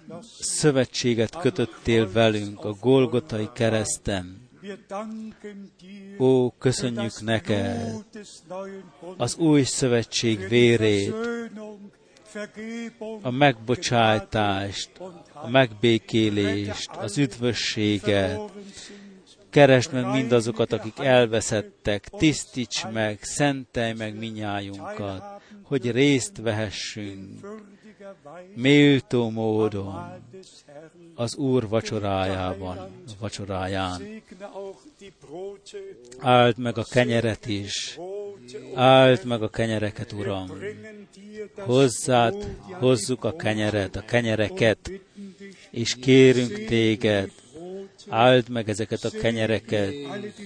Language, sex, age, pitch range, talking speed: Hungarian, male, 50-69, 110-160 Hz, 75 wpm